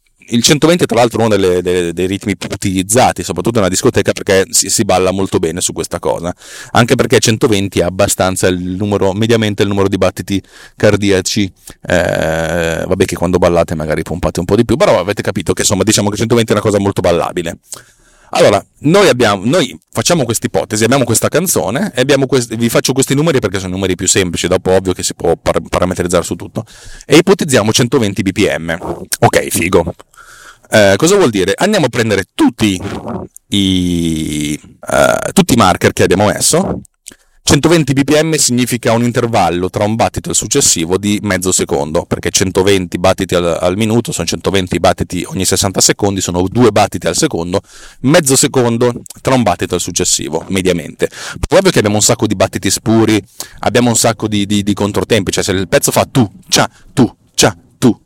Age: 30-49